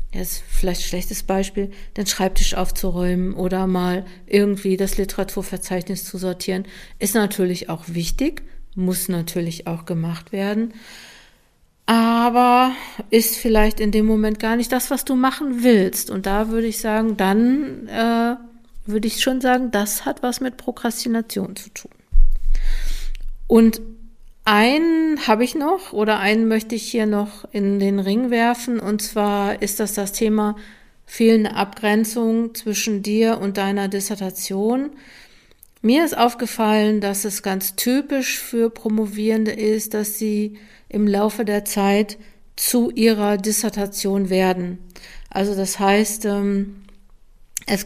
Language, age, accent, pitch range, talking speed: German, 50-69, German, 200-230 Hz, 135 wpm